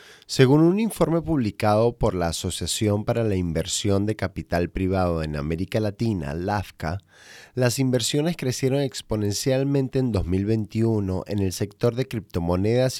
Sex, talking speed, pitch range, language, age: male, 130 wpm, 95-130 Hz, Spanish, 30-49